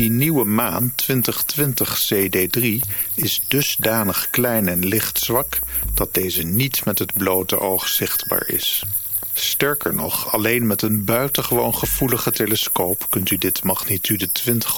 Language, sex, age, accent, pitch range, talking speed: Dutch, male, 50-69, Dutch, 95-120 Hz, 130 wpm